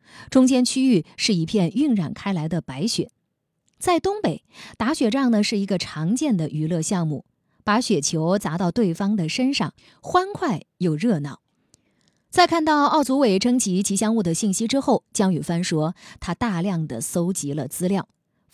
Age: 20-39